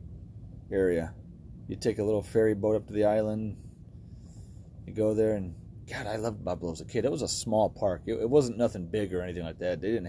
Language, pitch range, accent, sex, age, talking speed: English, 90-115 Hz, American, male, 30-49, 225 wpm